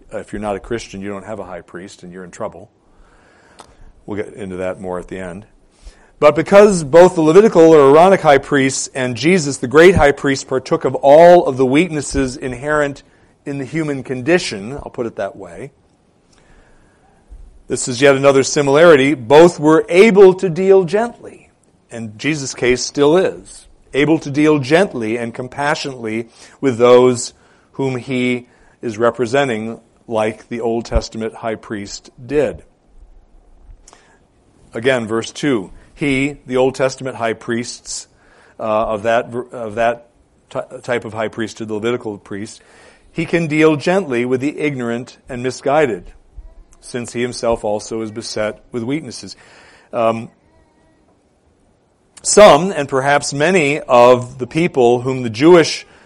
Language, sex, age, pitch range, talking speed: English, male, 40-59, 115-145 Hz, 145 wpm